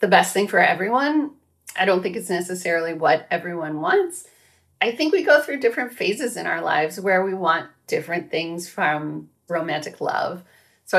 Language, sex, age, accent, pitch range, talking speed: English, female, 30-49, American, 155-190 Hz, 175 wpm